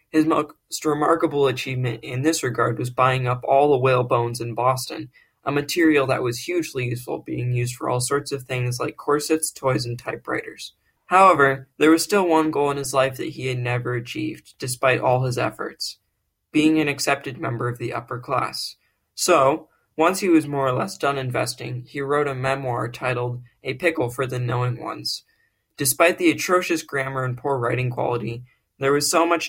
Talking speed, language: 185 wpm, English